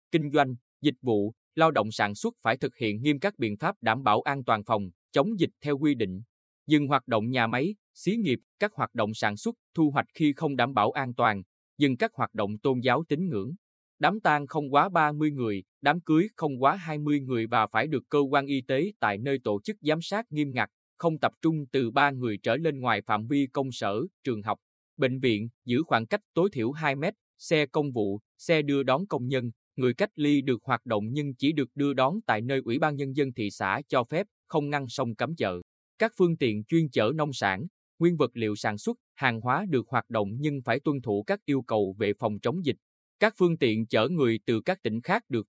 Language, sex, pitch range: Vietnamese, male, 110-155 Hz